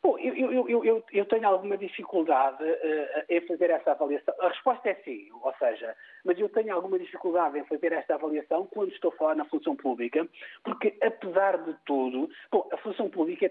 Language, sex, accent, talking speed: Portuguese, male, Portuguese, 180 wpm